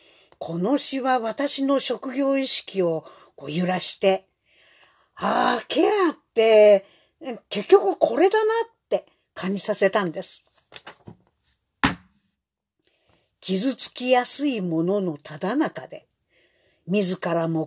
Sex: female